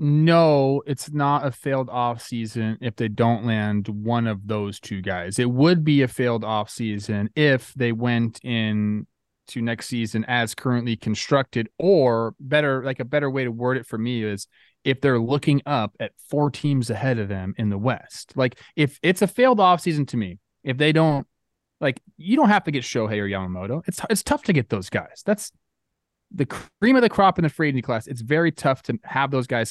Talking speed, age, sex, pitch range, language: 210 wpm, 20-39, male, 115-160 Hz, English